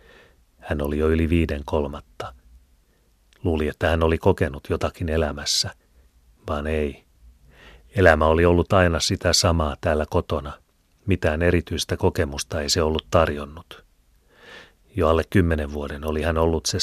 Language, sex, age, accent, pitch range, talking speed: Finnish, male, 30-49, native, 75-85 Hz, 135 wpm